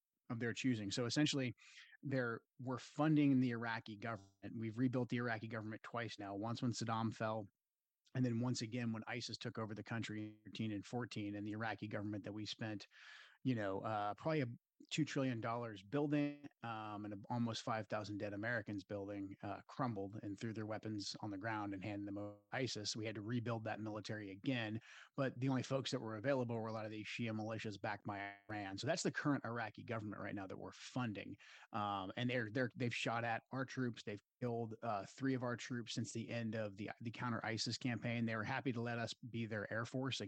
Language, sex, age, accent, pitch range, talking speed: English, male, 30-49, American, 105-120 Hz, 210 wpm